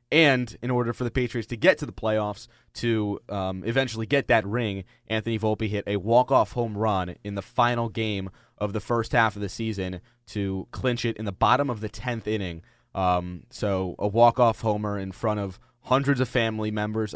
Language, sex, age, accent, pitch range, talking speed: English, male, 20-39, American, 105-120 Hz, 200 wpm